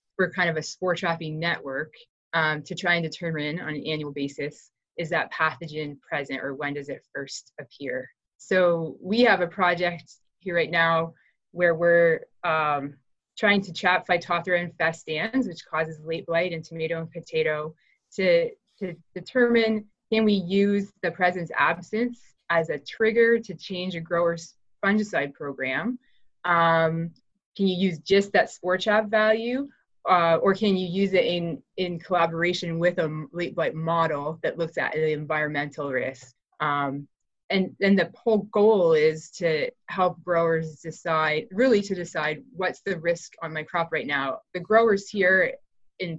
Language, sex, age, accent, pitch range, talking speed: English, female, 20-39, American, 155-190 Hz, 160 wpm